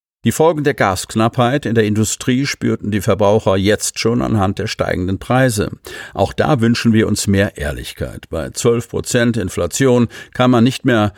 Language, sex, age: German, male, 50-69